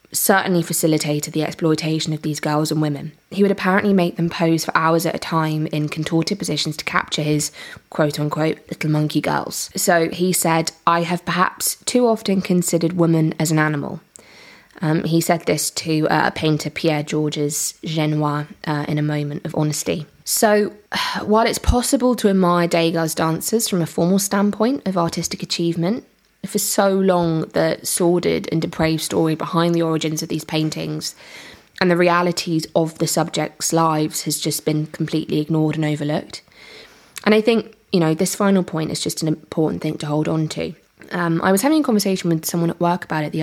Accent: British